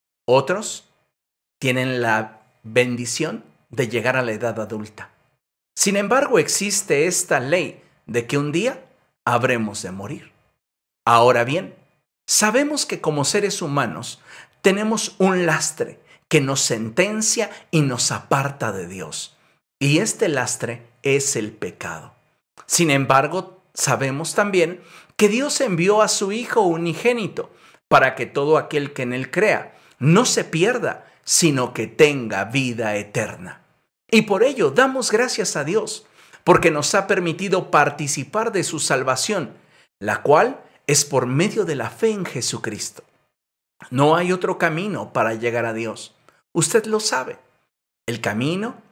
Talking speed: 135 wpm